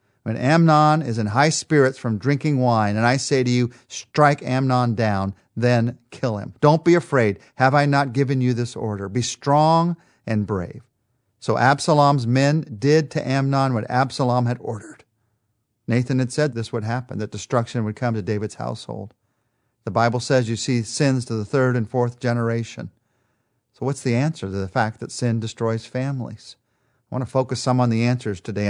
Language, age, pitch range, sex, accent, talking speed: English, 40-59, 115-150 Hz, male, American, 185 wpm